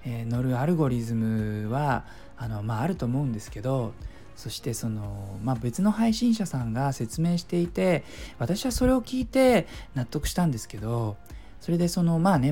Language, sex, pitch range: Japanese, male, 120-205 Hz